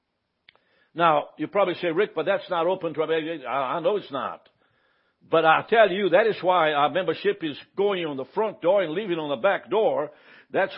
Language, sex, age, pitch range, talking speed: English, male, 60-79, 165-230 Hz, 205 wpm